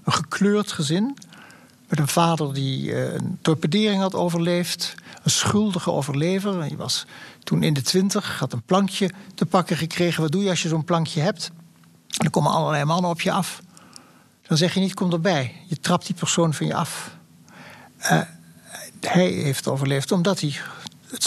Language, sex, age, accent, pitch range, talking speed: Dutch, male, 60-79, Dutch, 145-180 Hz, 175 wpm